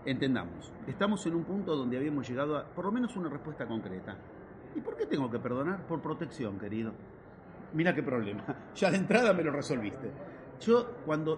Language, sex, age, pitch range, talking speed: Spanish, male, 40-59, 120-165 Hz, 185 wpm